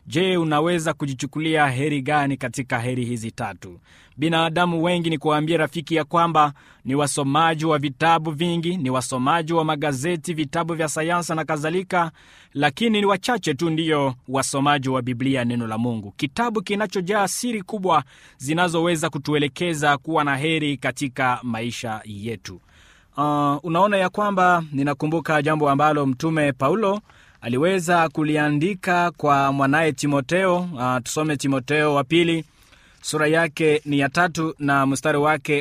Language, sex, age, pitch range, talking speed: Swahili, male, 30-49, 135-170 Hz, 135 wpm